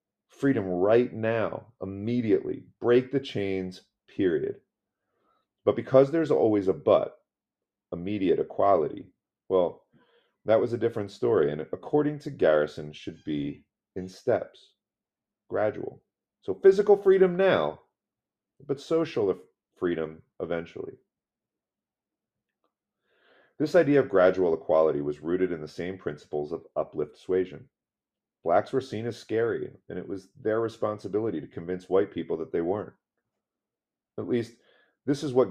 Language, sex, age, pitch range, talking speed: English, male, 30-49, 95-135 Hz, 125 wpm